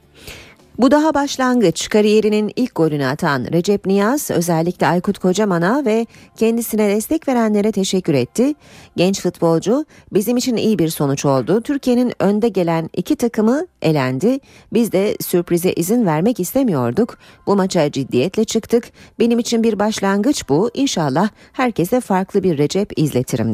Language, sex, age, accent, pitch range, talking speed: Turkish, female, 40-59, native, 155-225 Hz, 135 wpm